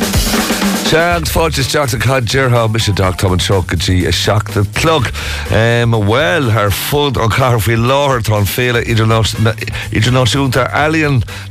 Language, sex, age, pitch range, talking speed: English, male, 50-69, 90-115 Hz, 110 wpm